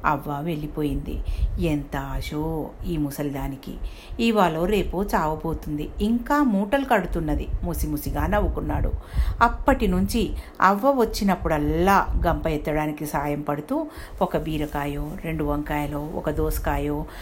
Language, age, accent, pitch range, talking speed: Telugu, 60-79, native, 150-205 Hz, 100 wpm